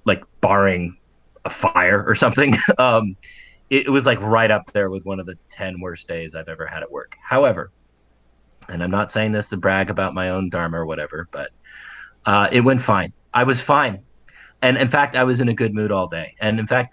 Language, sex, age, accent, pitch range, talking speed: English, male, 30-49, American, 95-115 Hz, 220 wpm